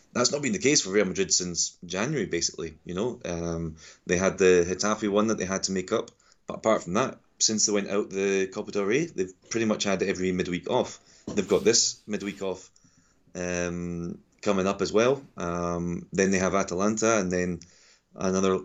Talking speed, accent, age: 205 wpm, British, 20-39